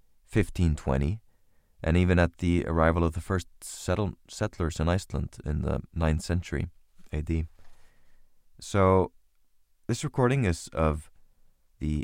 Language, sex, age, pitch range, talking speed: English, male, 30-49, 75-95 Hz, 120 wpm